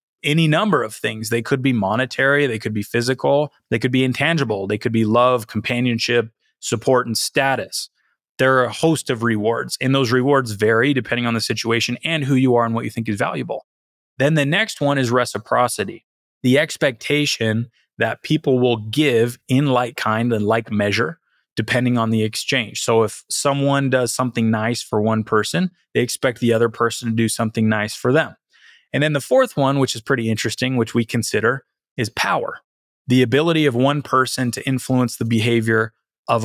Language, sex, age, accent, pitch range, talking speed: English, male, 20-39, American, 115-130 Hz, 190 wpm